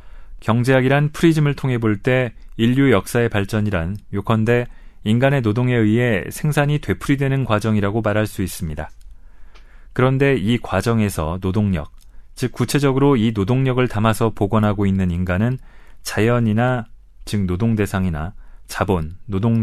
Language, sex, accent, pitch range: Korean, male, native, 100-125 Hz